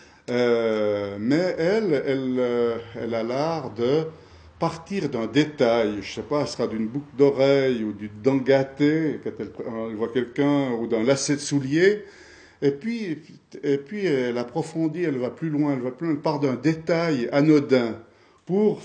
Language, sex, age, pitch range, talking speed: French, male, 50-69, 115-150 Hz, 170 wpm